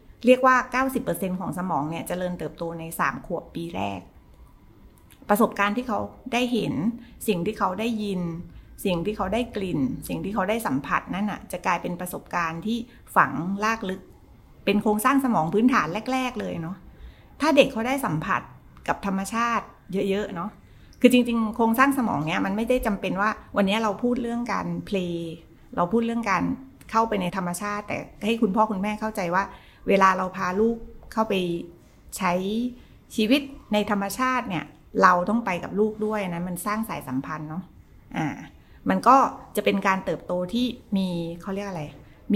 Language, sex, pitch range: Thai, female, 180-230 Hz